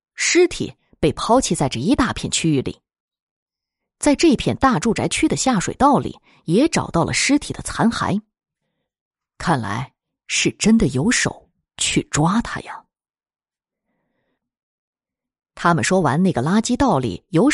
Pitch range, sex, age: 155-240 Hz, female, 20-39